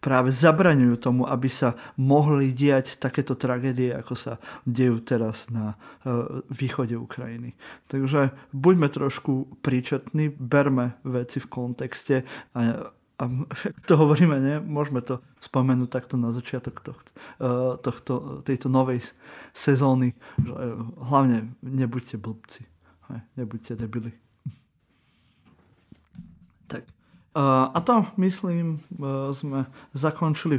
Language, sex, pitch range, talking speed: Slovak, male, 125-145 Hz, 100 wpm